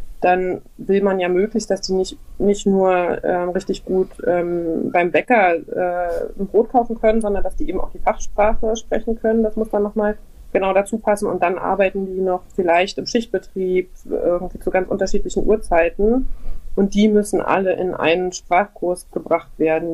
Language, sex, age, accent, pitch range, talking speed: German, female, 20-39, German, 170-205 Hz, 180 wpm